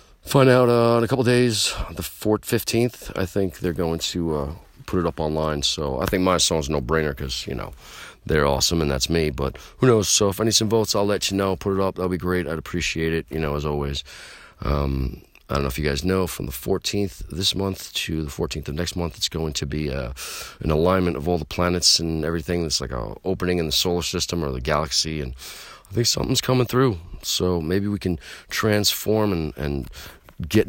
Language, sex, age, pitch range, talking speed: English, male, 30-49, 75-95 Hz, 235 wpm